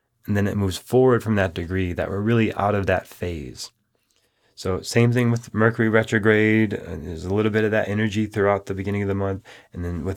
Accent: American